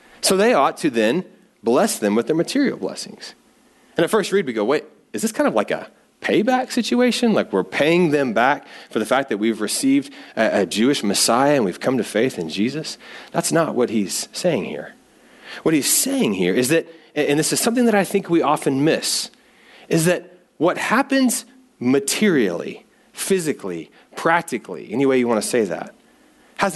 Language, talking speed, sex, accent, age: English, 190 wpm, male, American, 30-49